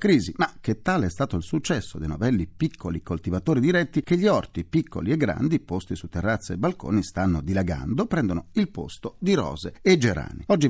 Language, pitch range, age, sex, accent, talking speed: Italian, 90-135 Hz, 40-59, male, native, 190 wpm